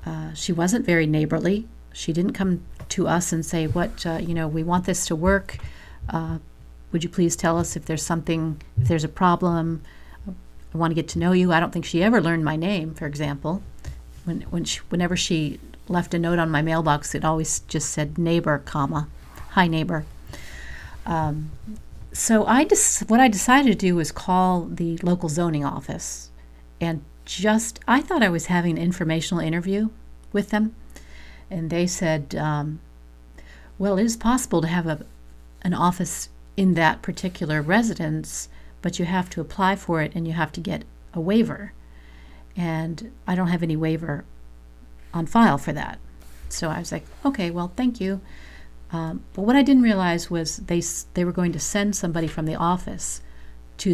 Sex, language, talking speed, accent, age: female, English, 175 wpm, American, 40-59